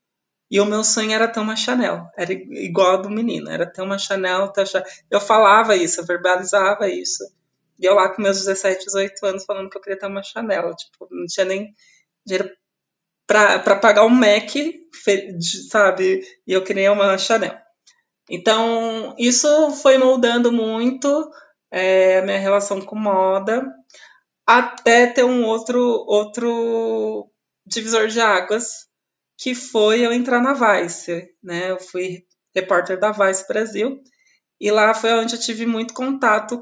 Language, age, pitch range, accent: Portuguese, 20-39, 190-230 Hz, Brazilian